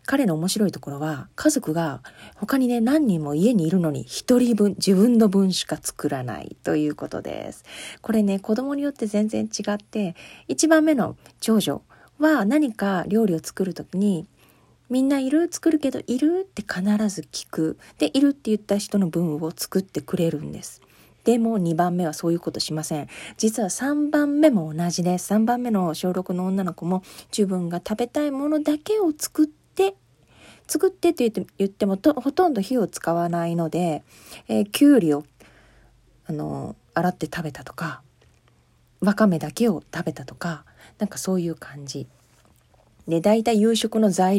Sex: female